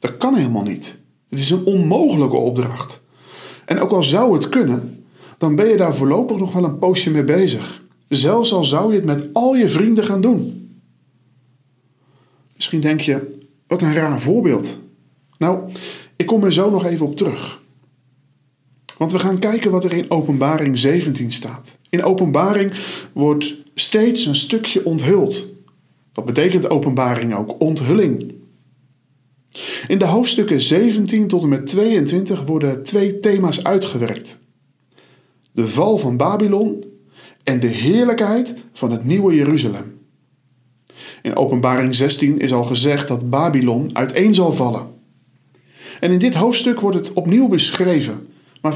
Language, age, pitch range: Dutch, 50-69, 130-190 Hz